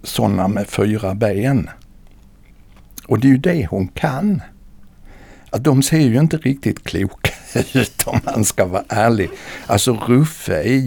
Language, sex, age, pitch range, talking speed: Swedish, male, 60-79, 95-135 Hz, 150 wpm